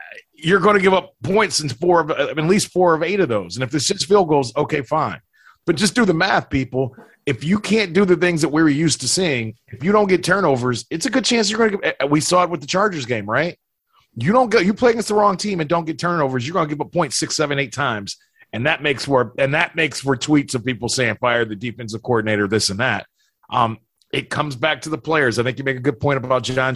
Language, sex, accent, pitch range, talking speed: English, male, American, 120-155 Hz, 265 wpm